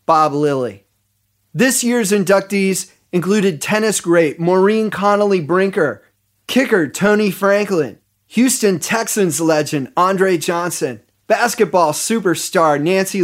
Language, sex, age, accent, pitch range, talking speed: English, male, 30-49, American, 160-205 Hz, 100 wpm